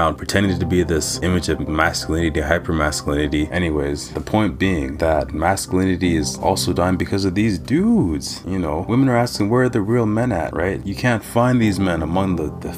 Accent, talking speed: American, 200 wpm